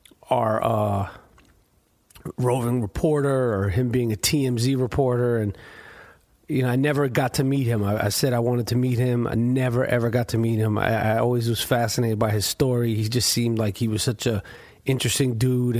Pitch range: 115-130 Hz